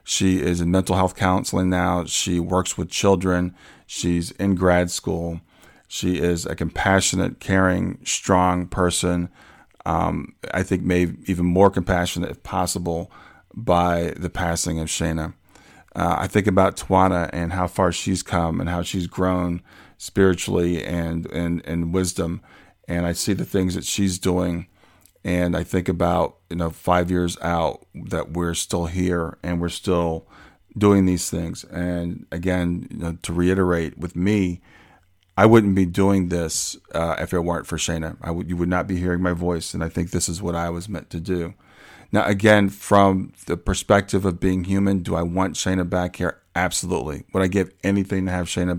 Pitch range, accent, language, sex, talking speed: 85-95 Hz, American, English, male, 175 wpm